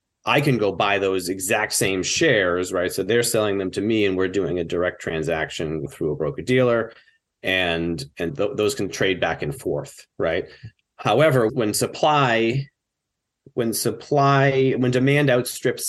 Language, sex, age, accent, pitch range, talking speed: English, male, 30-49, American, 90-115 Hz, 160 wpm